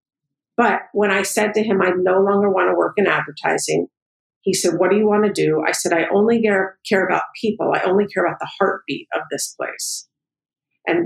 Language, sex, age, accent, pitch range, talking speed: English, female, 50-69, American, 175-225 Hz, 215 wpm